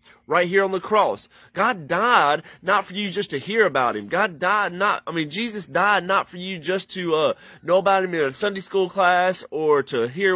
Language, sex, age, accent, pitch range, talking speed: English, male, 30-49, American, 165-205 Hz, 225 wpm